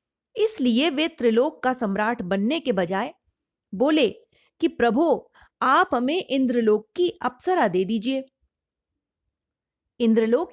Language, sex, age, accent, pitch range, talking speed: Hindi, female, 30-49, native, 225-320 Hz, 110 wpm